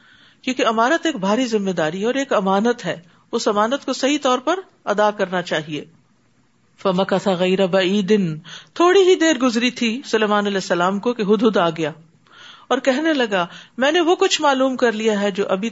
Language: Urdu